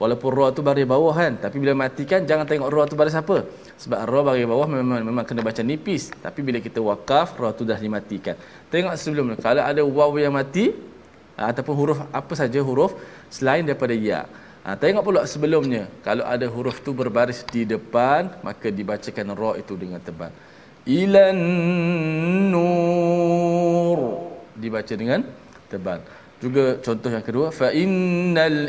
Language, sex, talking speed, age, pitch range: Malayalam, male, 155 wpm, 20-39, 110-160 Hz